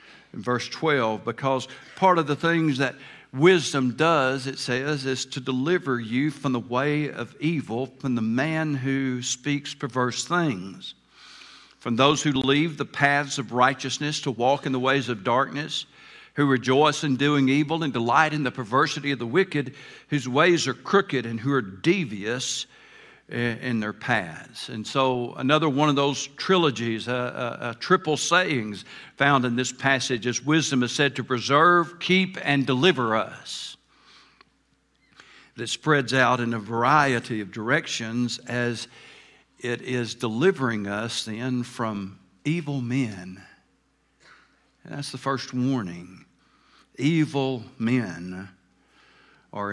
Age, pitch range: 60-79, 120-145 Hz